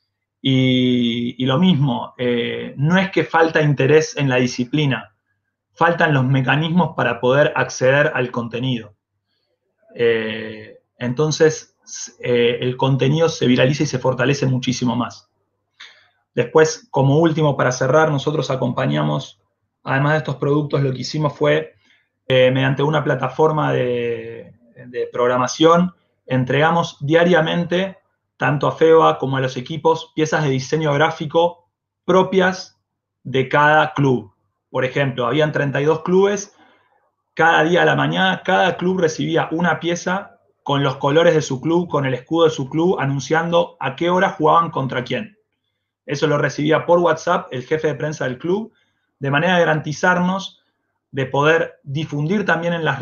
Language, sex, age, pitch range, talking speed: Spanish, male, 20-39, 130-165 Hz, 145 wpm